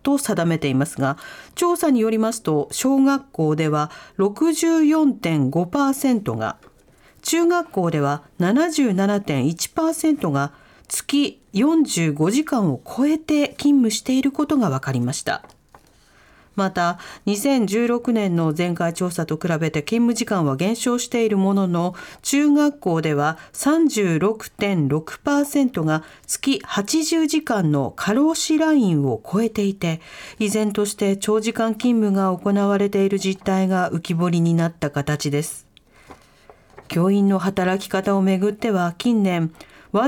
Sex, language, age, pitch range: female, Japanese, 40-59, 175-270 Hz